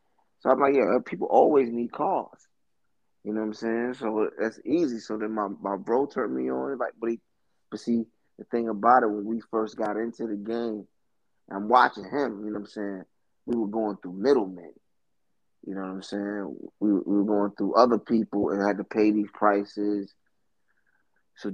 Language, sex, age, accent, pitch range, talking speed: English, male, 20-39, American, 100-115 Hz, 200 wpm